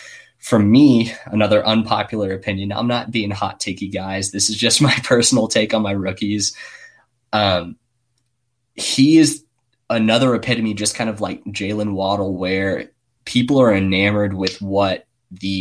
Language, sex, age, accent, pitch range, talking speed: English, male, 20-39, American, 95-110 Hz, 145 wpm